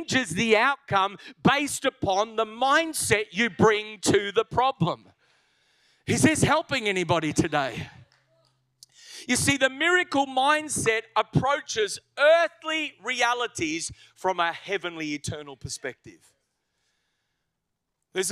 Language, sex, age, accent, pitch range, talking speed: English, male, 40-59, Australian, 195-255 Hz, 100 wpm